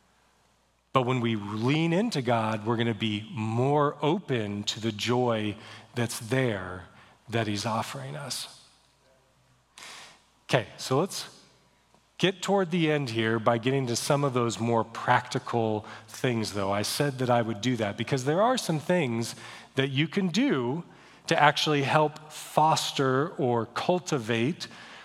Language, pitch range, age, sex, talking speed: English, 110-135 Hz, 40-59, male, 145 wpm